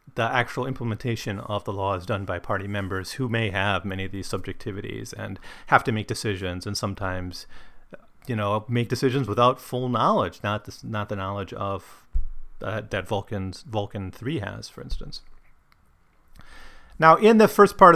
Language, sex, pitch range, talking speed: English, male, 100-130 Hz, 170 wpm